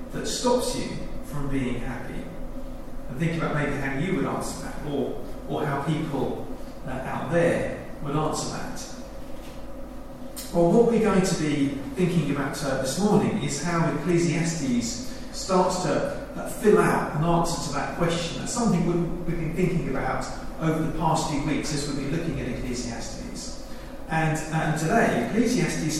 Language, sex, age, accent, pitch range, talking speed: English, male, 40-59, British, 145-190 Hz, 160 wpm